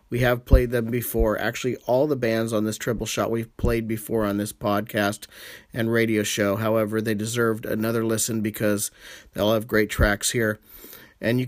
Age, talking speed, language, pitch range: 40-59, 190 wpm, English, 110-125 Hz